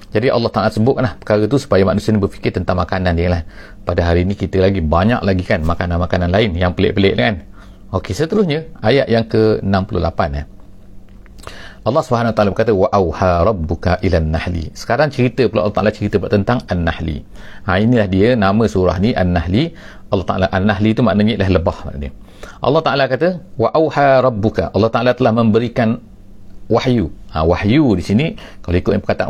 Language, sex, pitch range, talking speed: English, male, 95-115 Hz, 165 wpm